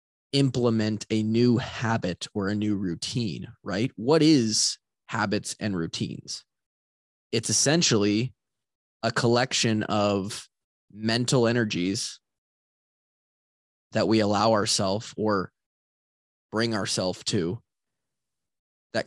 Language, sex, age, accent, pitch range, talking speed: English, male, 20-39, American, 100-125 Hz, 95 wpm